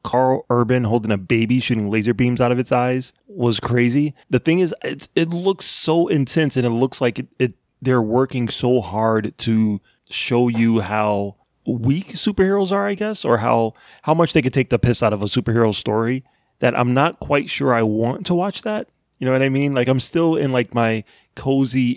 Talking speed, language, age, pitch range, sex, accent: 210 wpm, English, 30-49, 115-135 Hz, male, American